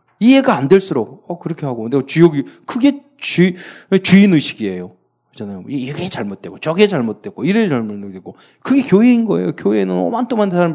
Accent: native